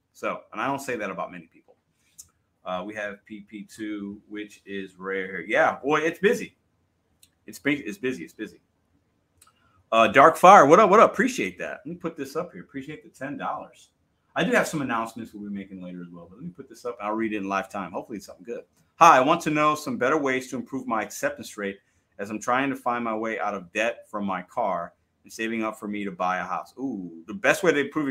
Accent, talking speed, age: American, 235 wpm, 30-49